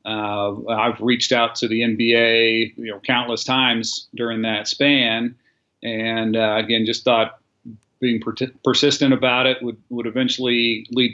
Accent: American